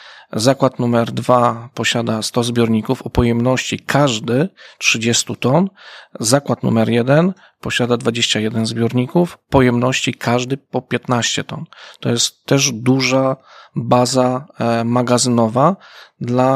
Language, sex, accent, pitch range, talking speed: Polish, male, native, 120-135 Hz, 105 wpm